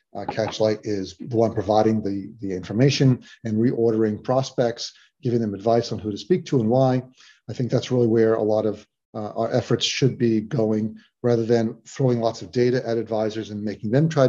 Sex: male